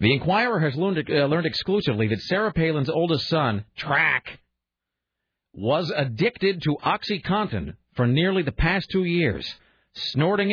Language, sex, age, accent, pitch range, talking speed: English, male, 40-59, American, 120-165 Hz, 130 wpm